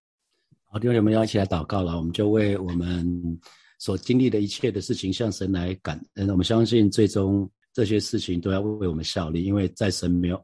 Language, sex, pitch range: Chinese, male, 85-100 Hz